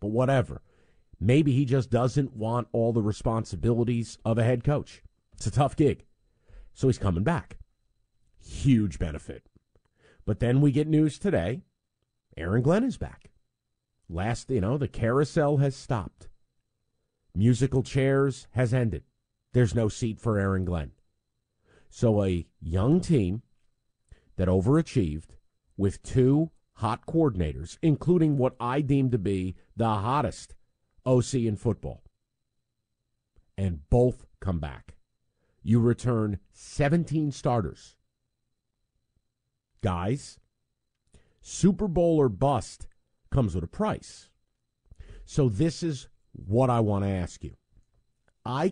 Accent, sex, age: American, male, 50-69